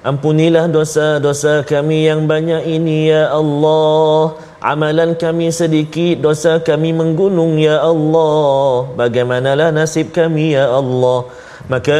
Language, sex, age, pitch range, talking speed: Malayalam, male, 30-49, 125-155 Hz, 110 wpm